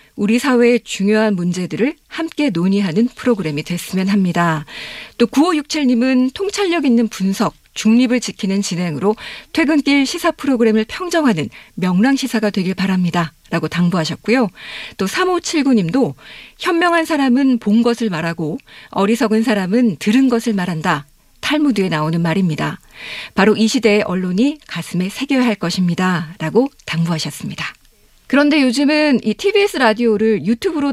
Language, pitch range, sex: Korean, 185-270 Hz, female